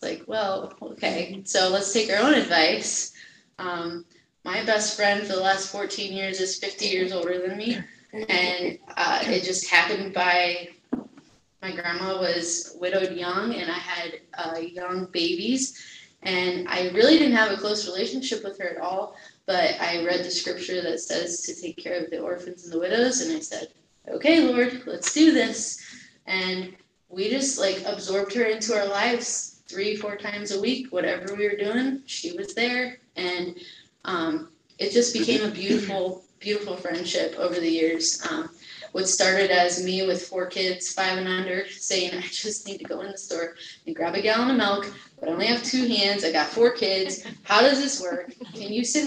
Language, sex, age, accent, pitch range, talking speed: English, female, 20-39, American, 180-245 Hz, 185 wpm